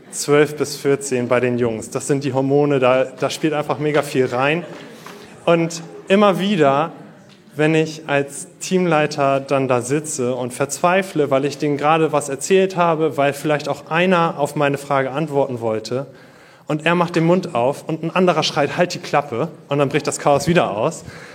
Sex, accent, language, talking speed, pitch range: male, German, German, 185 wpm, 140-170 Hz